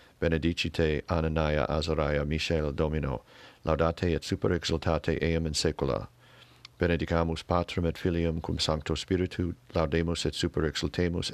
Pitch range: 80-90 Hz